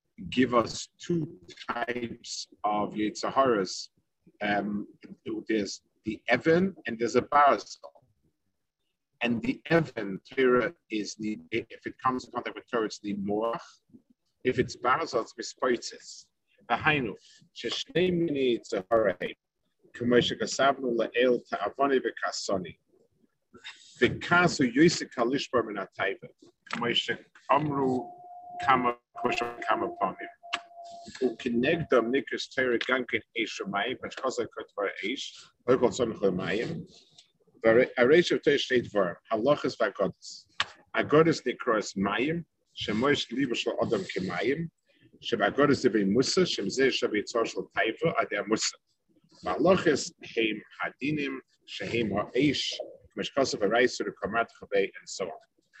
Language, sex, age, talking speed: English, male, 50-69, 60 wpm